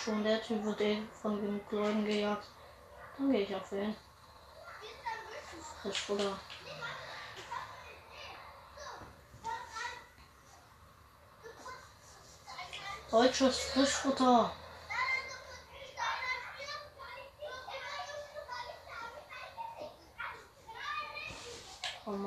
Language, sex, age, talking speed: German, female, 20-39, 45 wpm